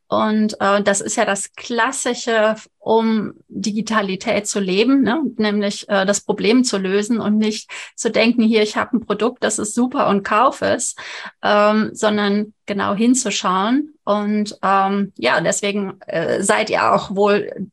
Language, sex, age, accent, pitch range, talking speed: German, female, 30-49, German, 205-245 Hz, 155 wpm